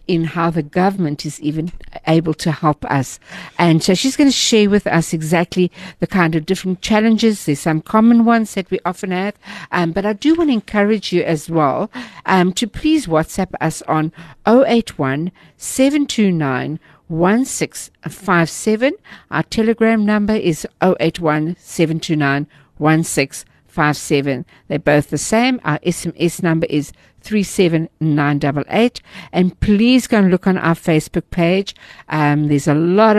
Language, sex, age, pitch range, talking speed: English, female, 60-79, 155-200 Hz, 140 wpm